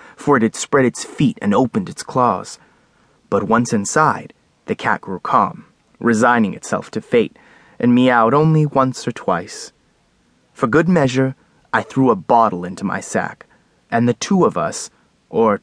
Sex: male